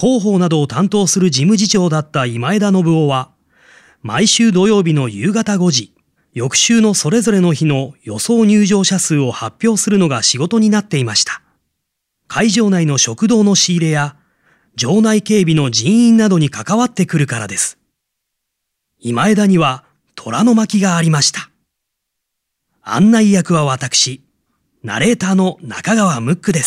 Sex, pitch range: male, 145-210 Hz